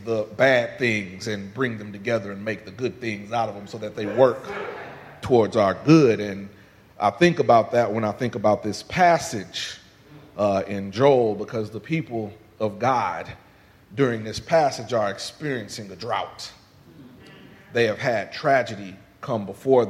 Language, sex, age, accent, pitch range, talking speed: English, male, 40-59, American, 100-120 Hz, 165 wpm